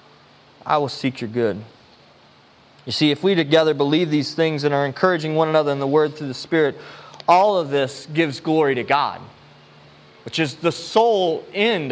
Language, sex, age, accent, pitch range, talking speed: English, male, 20-39, American, 135-190 Hz, 180 wpm